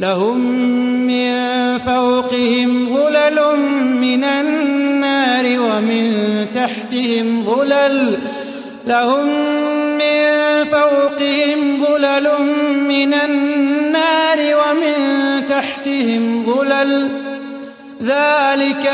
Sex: male